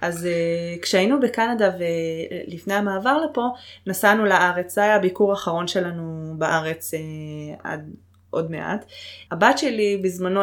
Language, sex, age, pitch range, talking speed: Hebrew, female, 20-39, 180-225 Hz, 125 wpm